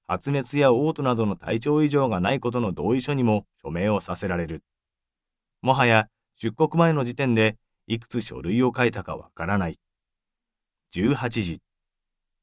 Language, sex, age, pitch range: Japanese, male, 40-59, 95-135 Hz